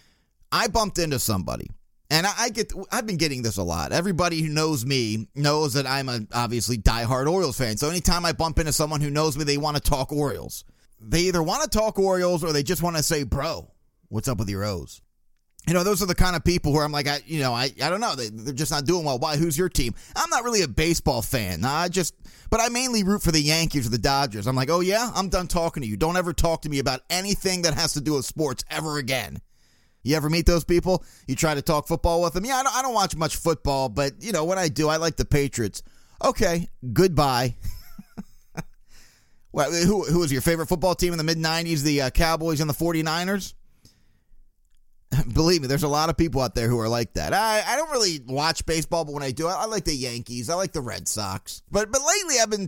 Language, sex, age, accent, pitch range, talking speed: English, male, 30-49, American, 135-180 Hz, 245 wpm